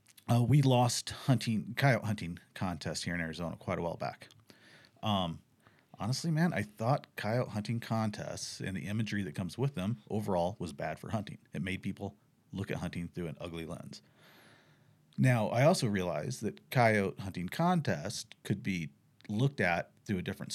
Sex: male